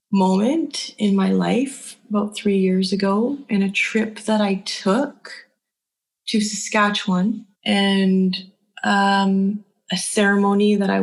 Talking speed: 120 wpm